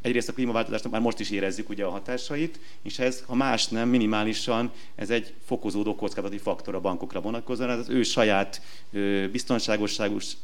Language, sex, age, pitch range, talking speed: Hungarian, male, 30-49, 100-115 Hz, 160 wpm